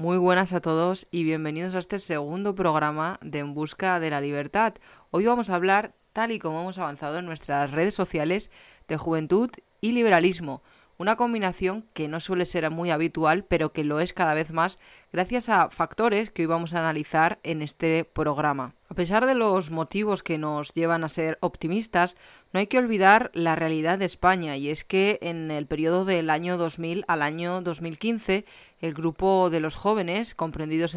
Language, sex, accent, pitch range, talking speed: Spanish, female, Spanish, 160-190 Hz, 185 wpm